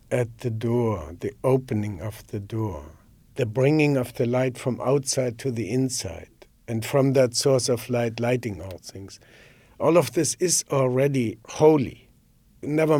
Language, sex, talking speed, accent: English, male, 155 wpm, German